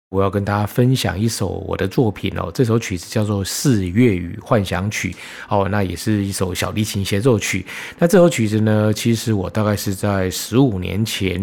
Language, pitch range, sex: Chinese, 95-115 Hz, male